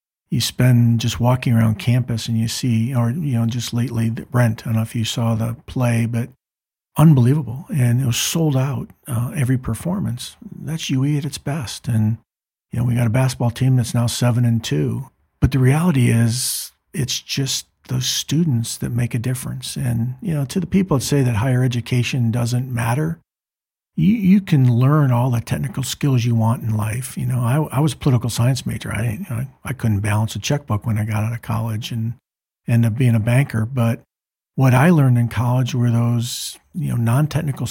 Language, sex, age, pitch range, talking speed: English, male, 50-69, 115-135 Hz, 200 wpm